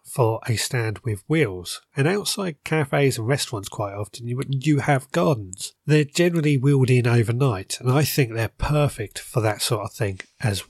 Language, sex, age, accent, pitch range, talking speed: English, male, 40-59, British, 110-145 Hz, 180 wpm